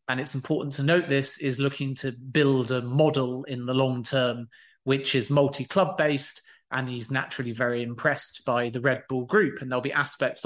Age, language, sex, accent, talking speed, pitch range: 30-49, English, male, British, 195 wpm, 130-145 Hz